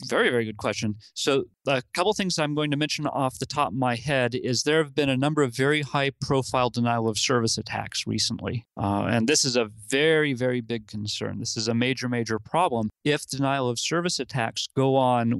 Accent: American